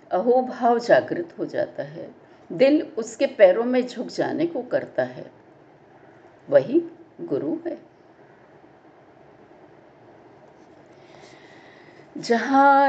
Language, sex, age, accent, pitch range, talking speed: Hindi, female, 60-79, native, 220-330 Hz, 90 wpm